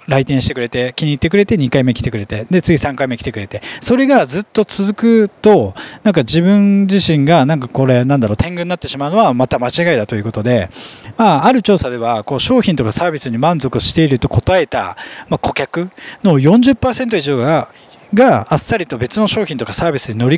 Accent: native